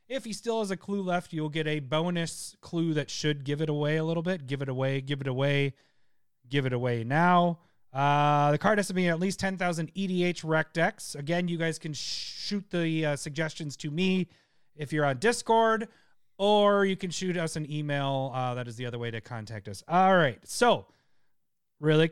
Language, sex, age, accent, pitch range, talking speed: English, male, 30-49, American, 140-180 Hz, 205 wpm